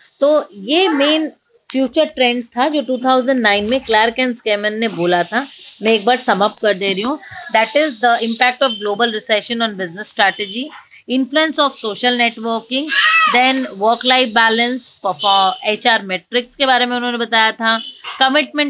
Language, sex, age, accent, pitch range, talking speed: English, female, 30-49, Indian, 210-260 Hz, 120 wpm